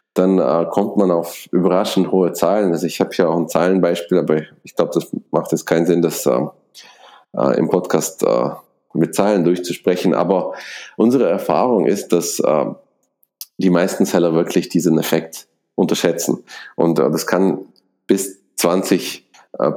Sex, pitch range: male, 80-95 Hz